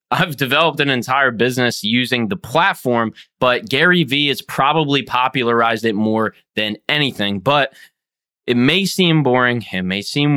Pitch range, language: 115-145 Hz, English